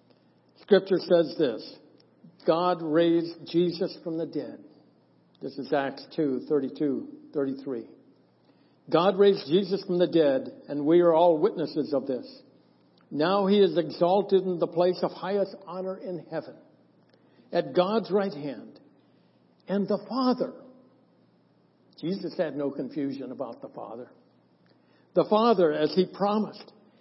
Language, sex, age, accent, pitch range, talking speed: English, male, 60-79, American, 145-195 Hz, 130 wpm